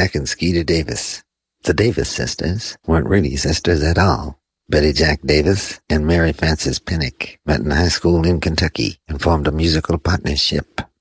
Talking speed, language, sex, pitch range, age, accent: 160 wpm, English, male, 75-85 Hz, 50-69, American